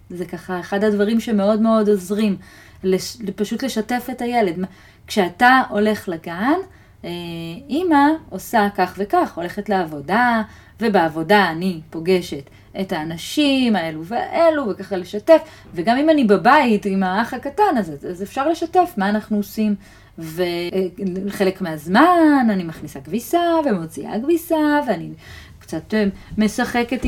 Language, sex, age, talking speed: Hebrew, female, 30-49, 115 wpm